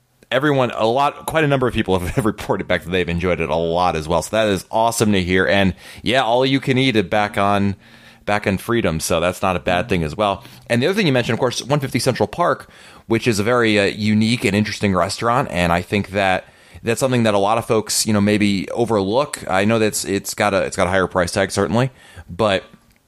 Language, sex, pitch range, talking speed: English, male, 90-120 Hz, 235 wpm